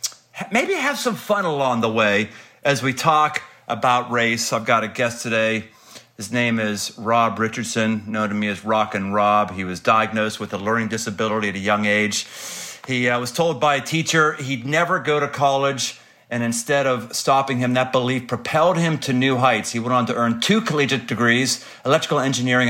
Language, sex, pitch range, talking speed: English, male, 115-140 Hz, 195 wpm